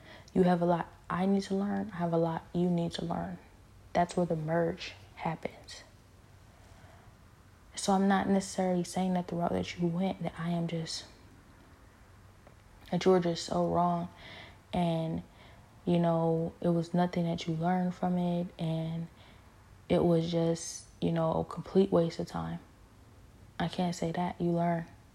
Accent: American